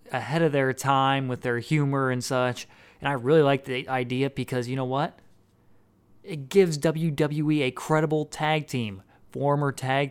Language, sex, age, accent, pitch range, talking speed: English, male, 30-49, American, 120-145 Hz, 165 wpm